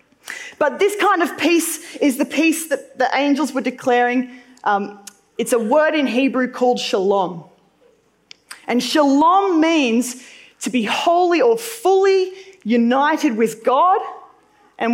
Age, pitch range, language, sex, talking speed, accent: 20-39, 210-305 Hz, English, female, 135 wpm, Australian